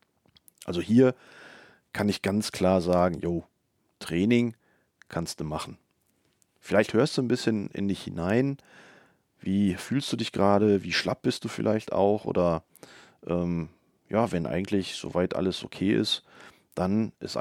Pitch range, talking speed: 90-110 Hz, 145 wpm